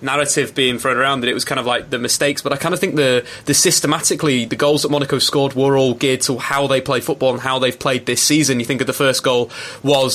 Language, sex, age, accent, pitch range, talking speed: English, male, 20-39, British, 130-145 Hz, 270 wpm